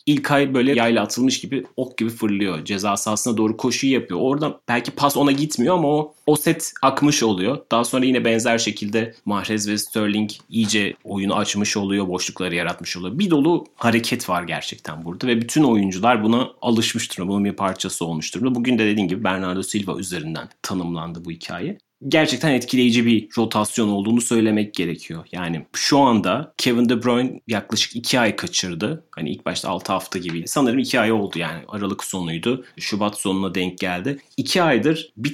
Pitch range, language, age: 100-130 Hz, Turkish, 30-49